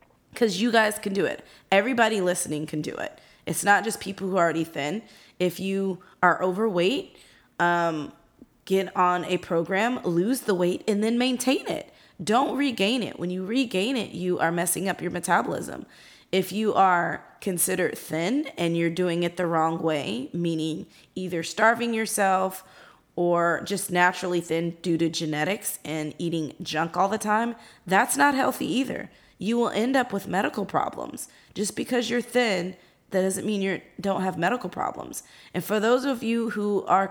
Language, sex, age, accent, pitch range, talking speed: English, female, 20-39, American, 175-220 Hz, 175 wpm